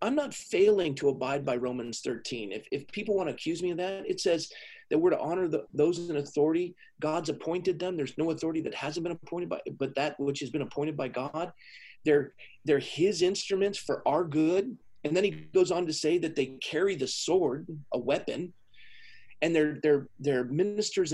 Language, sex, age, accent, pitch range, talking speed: English, male, 40-59, American, 150-230 Hz, 205 wpm